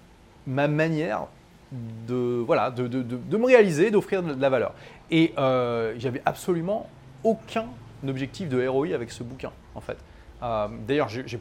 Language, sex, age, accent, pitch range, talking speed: French, male, 30-49, French, 120-165 Hz, 160 wpm